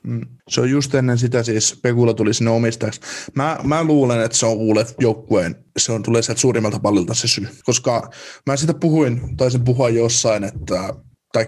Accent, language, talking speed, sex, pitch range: native, Finnish, 180 wpm, male, 110-125 Hz